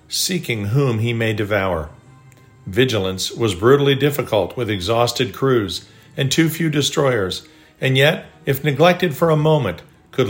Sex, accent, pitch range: male, American, 115-150 Hz